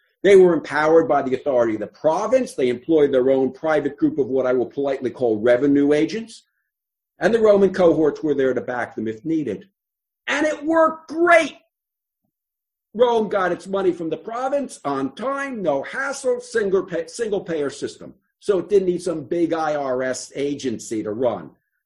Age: 50-69